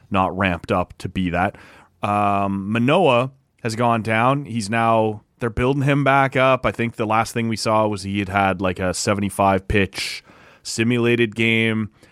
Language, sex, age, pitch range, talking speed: English, male, 30-49, 110-150 Hz, 175 wpm